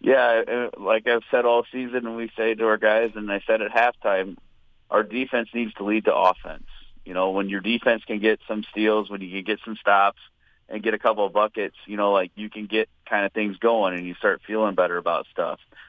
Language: English